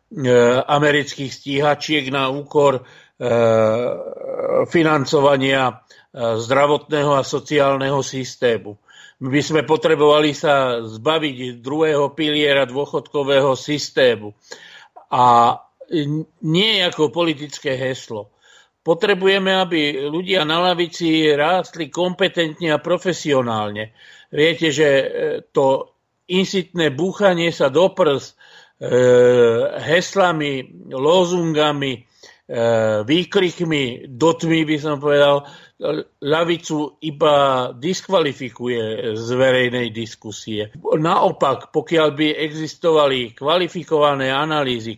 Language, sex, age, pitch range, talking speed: Slovak, male, 50-69, 130-170 Hz, 80 wpm